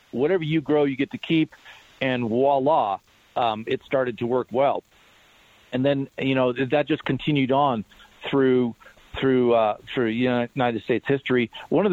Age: 50-69